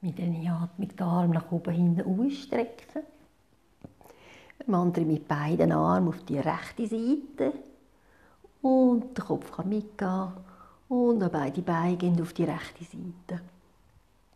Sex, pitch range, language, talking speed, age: female, 160-200 Hz, German, 130 wpm, 60-79